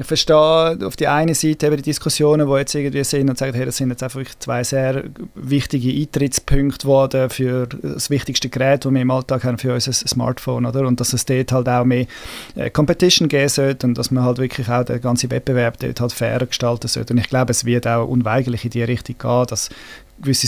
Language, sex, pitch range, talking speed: German, male, 125-140 Hz, 215 wpm